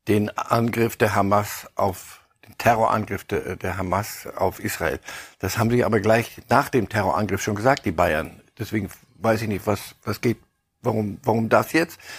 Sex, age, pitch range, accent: male, 60-79, 110-150 Hz, German